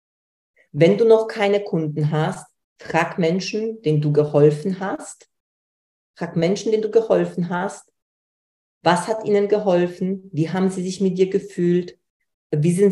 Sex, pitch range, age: female, 150-185 Hz, 40-59